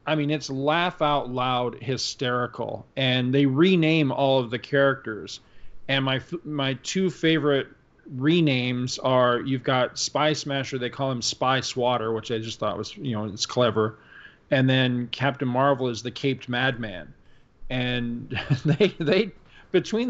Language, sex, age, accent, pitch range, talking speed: English, male, 40-59, American, 120-145 Hz, 150 wpm